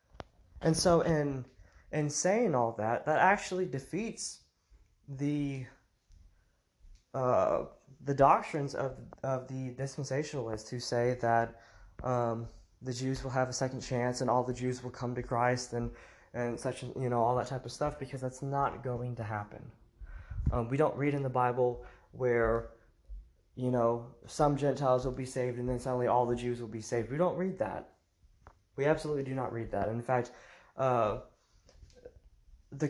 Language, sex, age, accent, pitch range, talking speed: English, male, 20-39, American, 120-140 Hz, 170 wpm